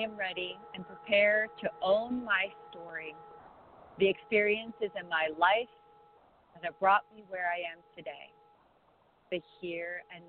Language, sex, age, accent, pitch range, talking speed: English, female, 40-59, American, 160-200 Hz, 145 wpm